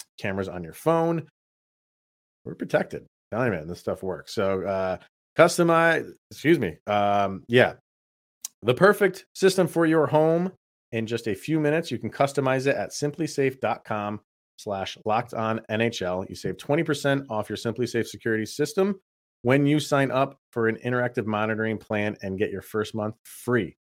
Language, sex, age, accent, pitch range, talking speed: English, male, 30-49, American, 100-135 Hz, 160 wpm